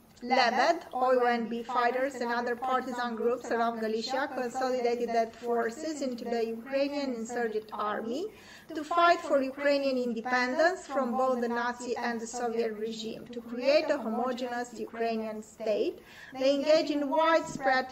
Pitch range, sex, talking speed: 230-290 Hz, female, 135 wpm